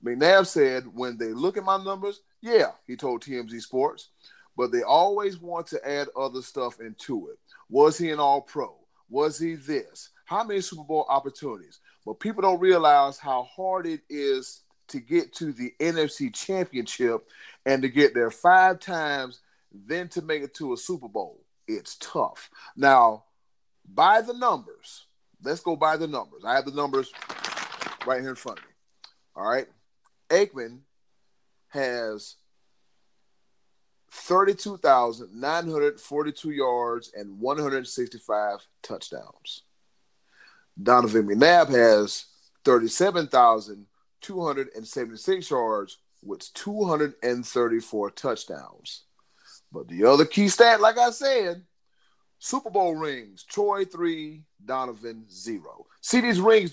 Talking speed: 125 wpm